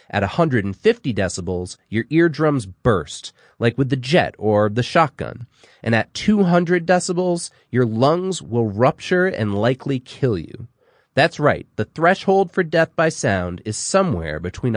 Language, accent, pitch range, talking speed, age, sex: English, American, 105-165 Hz, 145 wpm, 30-49, male